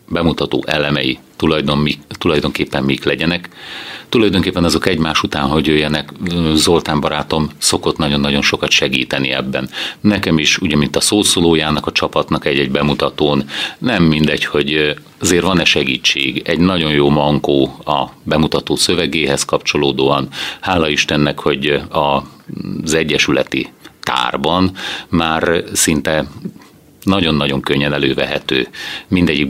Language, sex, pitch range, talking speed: Hungarian, male, 70-90 Hz, 115 wpm